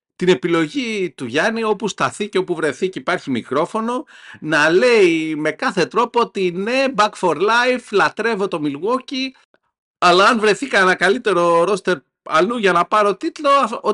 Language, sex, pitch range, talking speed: Greek, male, 155-240 Hz, 160 wpm